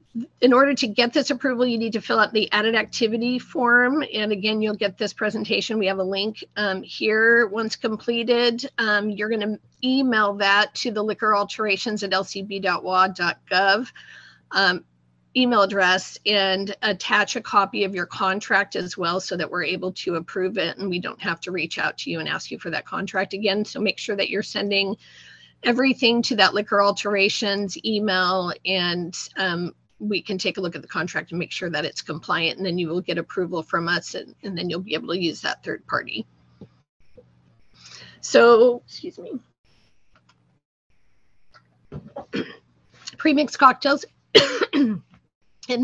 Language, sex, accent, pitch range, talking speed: English, female, American, 185-235 Hz, 170 wpm